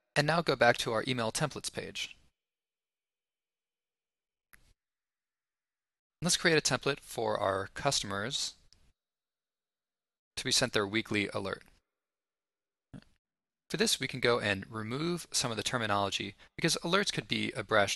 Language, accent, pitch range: English, American, 105-135 Hz